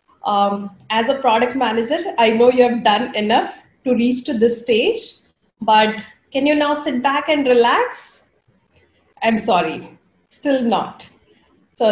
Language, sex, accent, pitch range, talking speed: English, female, Indian, 225-305 Hz, 145 wpm